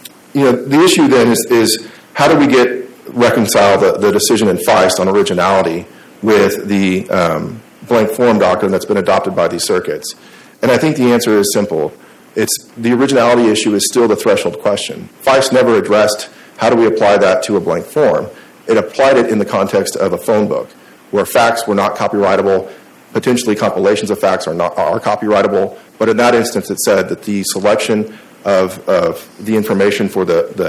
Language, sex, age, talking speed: English, male, 40-59, 195 wpm